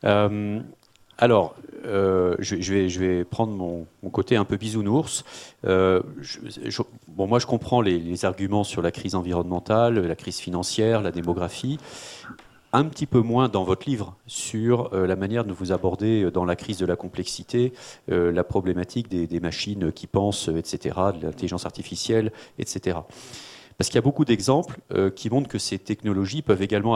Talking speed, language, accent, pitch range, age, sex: 175 wpm, French, French, 90-110 Hz, 40-59, male